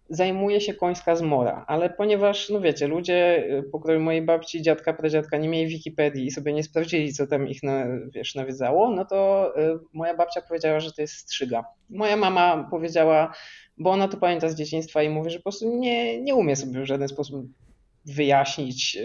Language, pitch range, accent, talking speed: Polish, 145-175 Hz, native, 180 wpm